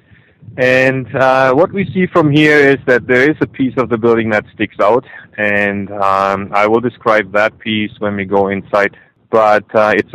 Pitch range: 95-115 Hz